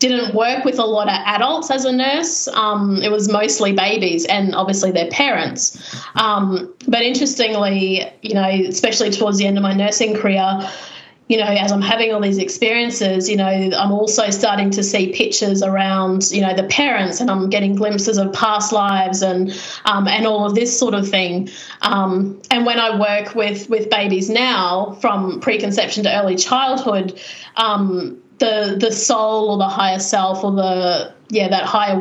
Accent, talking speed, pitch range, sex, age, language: Australian, 180 wpm, 195-230 Hz, female, 30-49, English